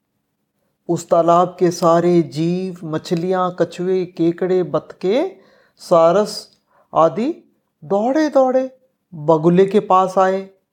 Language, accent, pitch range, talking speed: Hindi, native, 175-260 Hz, 95 wpm